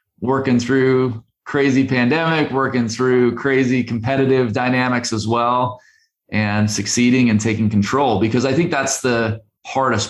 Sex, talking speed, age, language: male, 130 wpm, 30-49, English